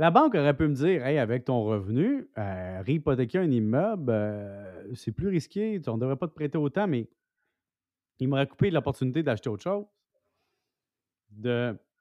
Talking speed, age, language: 170 wpm, 30-49, French